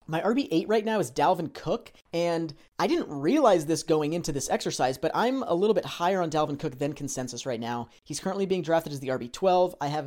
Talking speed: 225 wpm